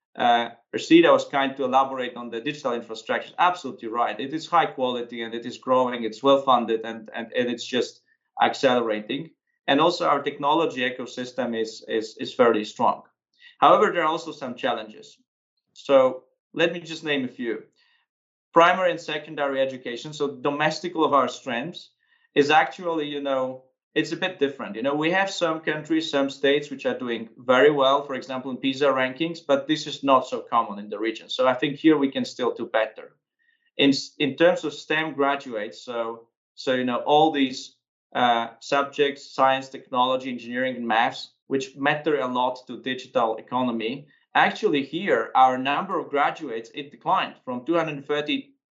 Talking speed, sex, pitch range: 175 wpm, male, 125-155 Hz